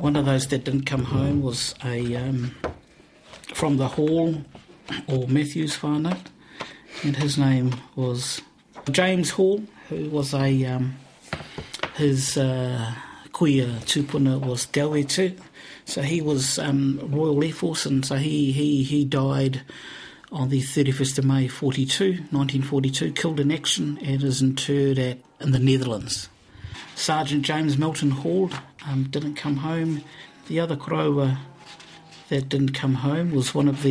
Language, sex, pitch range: English, male, 130-145 Hz